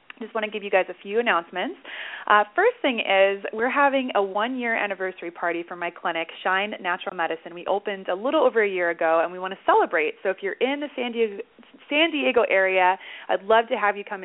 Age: 30-49